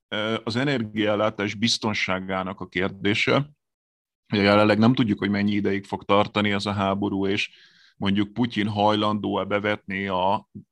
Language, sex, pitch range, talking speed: Hungarian, male, 100-115 Hz, 130 wpm